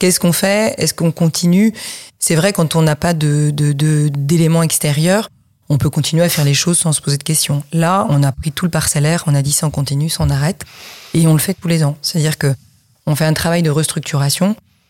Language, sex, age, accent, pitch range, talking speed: French, female, 30-49, French, 145-165 Hz, 240 wpm